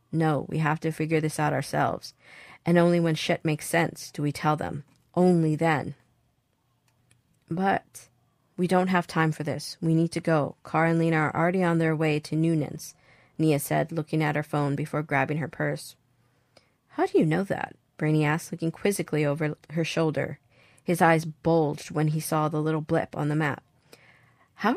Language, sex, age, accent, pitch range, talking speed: English, female, 40-59, American, 145-175 Hz, 185 wpm